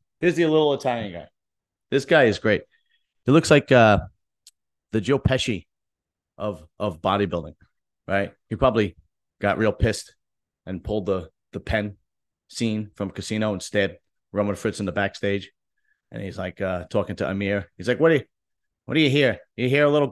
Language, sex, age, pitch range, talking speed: English, male, 40-59, 100-145 Hz, 175 wpm